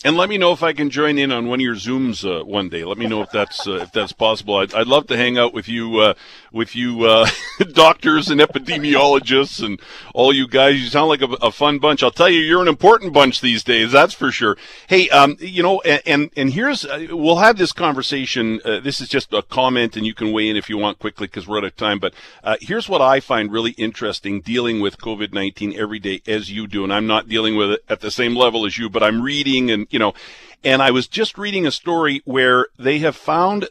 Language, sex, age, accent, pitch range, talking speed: English, male, 50-69, American, 115-155 Hz, 255 wpm